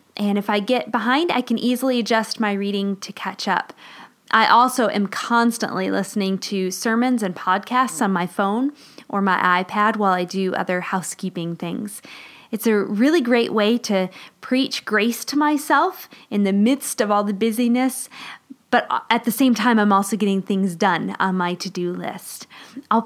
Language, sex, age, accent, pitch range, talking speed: English, female, 20-39, American, 190-245 Hz, 175 wpm